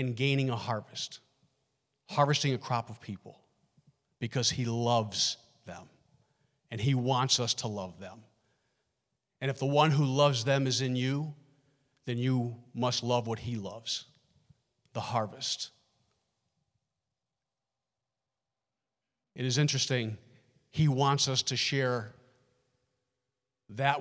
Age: 40-59